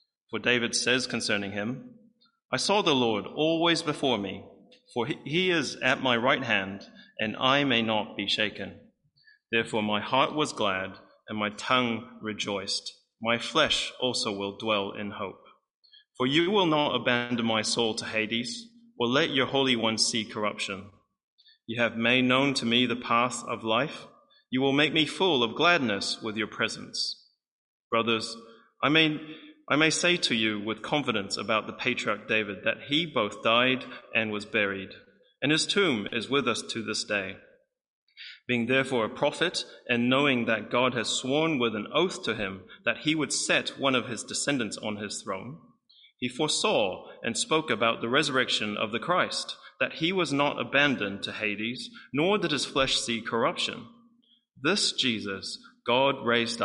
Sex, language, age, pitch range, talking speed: male, English, 30-49, 110-155 Hz, 170 wpm